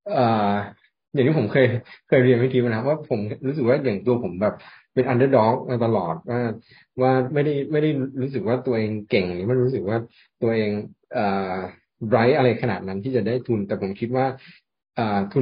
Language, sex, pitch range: Thai, male, 105-130 Hz